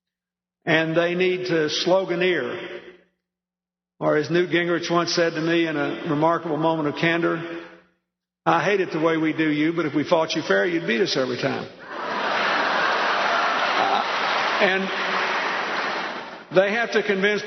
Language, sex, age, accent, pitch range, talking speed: English, male, 50-69, American, 155-185 Hz, 150 wpm